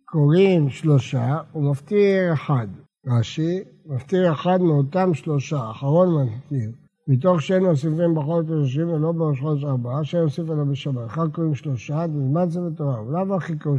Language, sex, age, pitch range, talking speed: Hebrew, male, 60-79, 145-180 Hz, 140 wpm